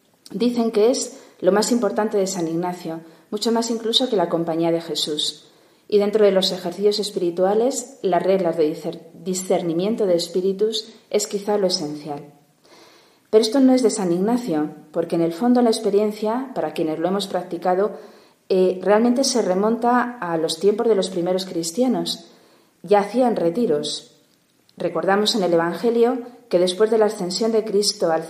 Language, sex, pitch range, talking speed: Spanish, female, 170-220 Hz, 165 wpm